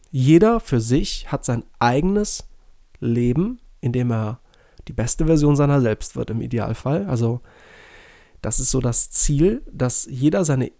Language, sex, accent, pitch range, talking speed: German, male, German, 120-160 Hz, 145 wpm